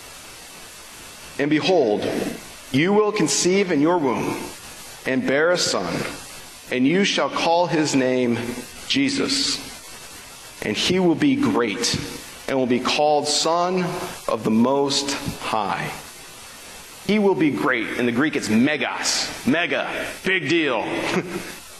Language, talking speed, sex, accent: English, 125 wpm, male, American